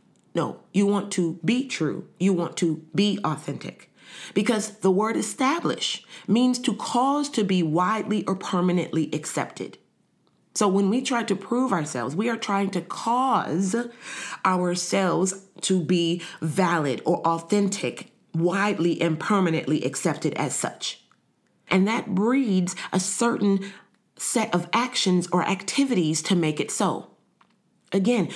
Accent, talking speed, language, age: American, 135 wpm, English, 40-59